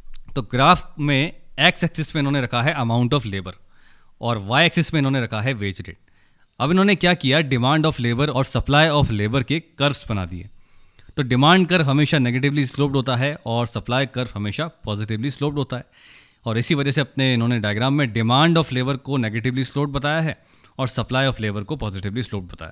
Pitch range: 115-150 Hz